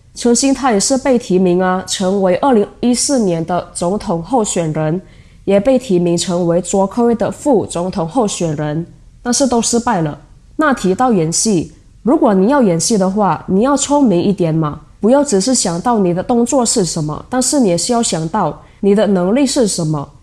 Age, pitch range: 20-39, 175-240 Hz